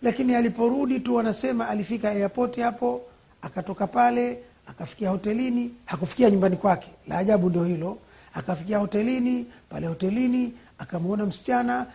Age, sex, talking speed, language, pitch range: 50-69, male, 120 wpm, Swahili, 185-235 Hz